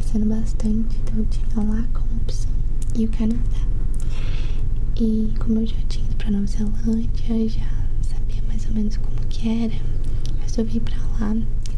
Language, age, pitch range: Portuguese, 20-39, 110-115 Hz